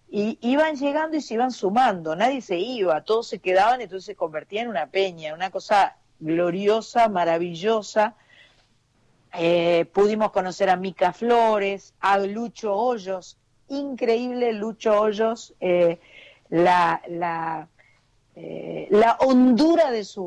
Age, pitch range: 50-69, 190-250 Hz